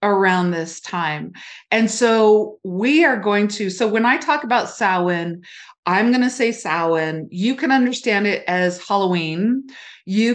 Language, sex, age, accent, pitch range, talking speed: English, female, 30-49, American, 180-230 Hz, 155 wpm